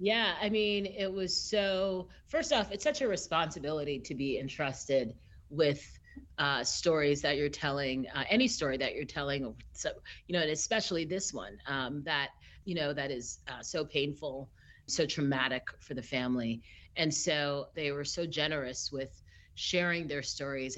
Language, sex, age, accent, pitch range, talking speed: English, female, 40-59, American, 130-175 Hz, 170 wpm